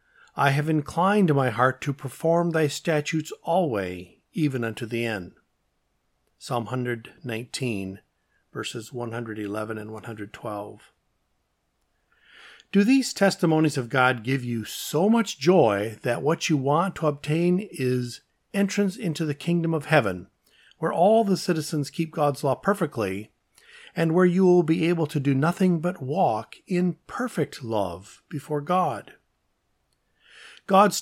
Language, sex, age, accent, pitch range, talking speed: English, male, 50-69, American, 125-175 Hz, 140 wpm